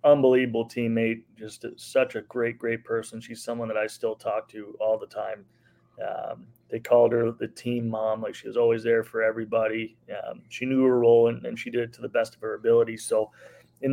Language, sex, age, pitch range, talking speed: English, male, 30-49, 115-125 Hz, 215 wpm